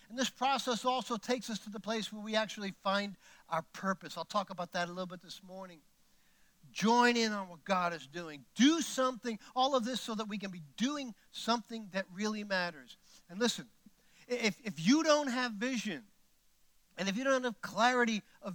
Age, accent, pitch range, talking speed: 50-69, American, 205-260 Hz, 195 wpm